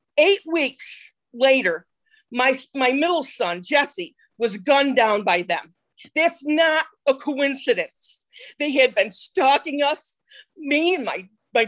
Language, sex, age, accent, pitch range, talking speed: English, female, 40-59, American, 260-355 Hz, 135 wpm